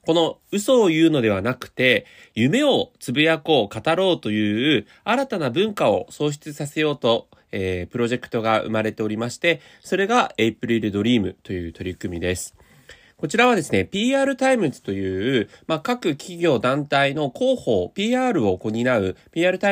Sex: male